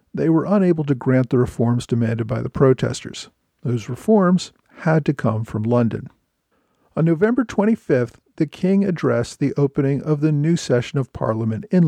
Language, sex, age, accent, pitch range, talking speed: English, male, 50-69, American, 125-160 Hz, 165 wpm